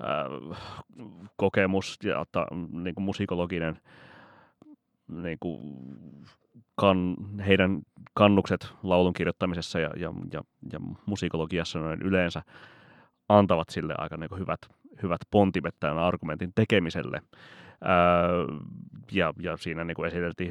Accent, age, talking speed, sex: native, 30-49, 95 wpm, male